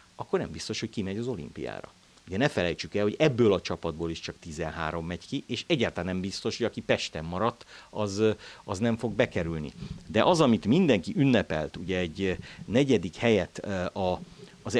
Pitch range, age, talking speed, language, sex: 90-120 Hz, 50-69, 175 wpm, Hungarian, male